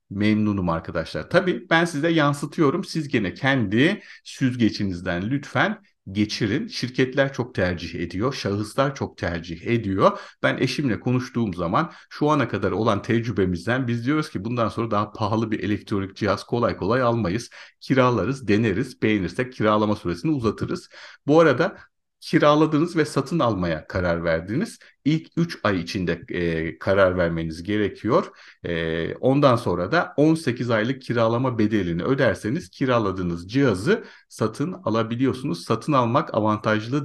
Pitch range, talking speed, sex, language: 95-135 Hz, 130 wpm, male, Turkish